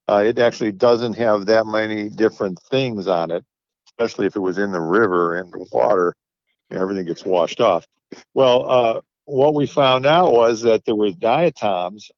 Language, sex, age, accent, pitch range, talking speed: English, male, 50-69, American, 90-115 Hz, 175 wpm